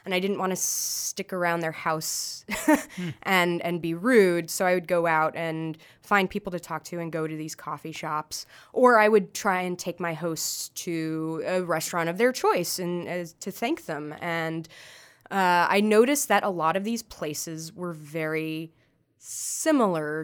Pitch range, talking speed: 165-210 Hz, 185 wpm